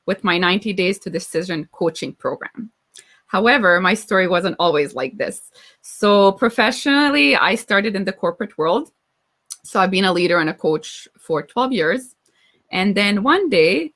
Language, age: English, 20-39